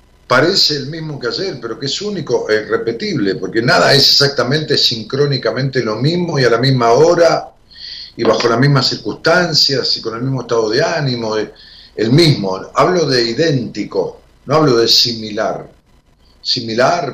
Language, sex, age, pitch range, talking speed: Spanish, male, 50-69, 110-160 Hz, 160 wpm